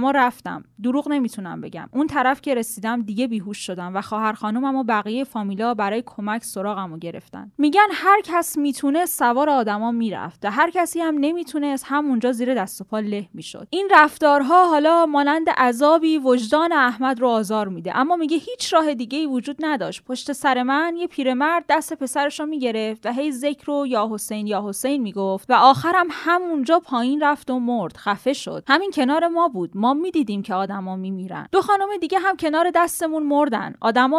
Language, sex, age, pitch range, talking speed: Persian, female, 10-29, 220-305 Hz, 180 wpm